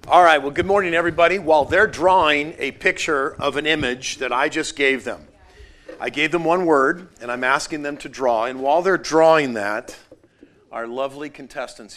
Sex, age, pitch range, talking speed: male, 50-69, 120-155 Hz, 190 wpm